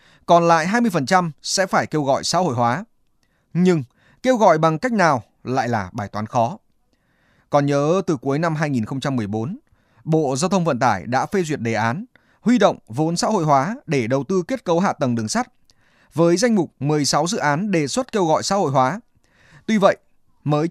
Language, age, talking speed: Vietnamese, 20-39, 195 wpm